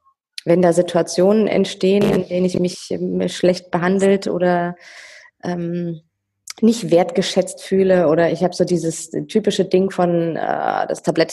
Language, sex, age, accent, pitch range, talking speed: German, female, 20-39, German, 155-185 Hz, 145 wpm